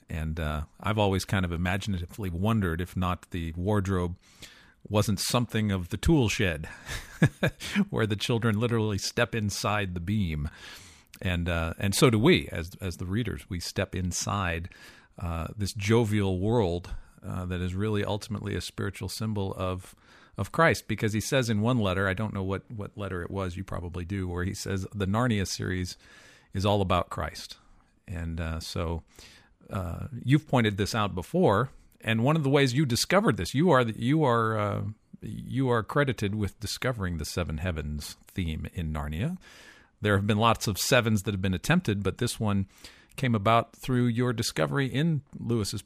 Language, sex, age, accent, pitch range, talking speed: English, male, 50-69, American, 90-110 Hz, 175 wpm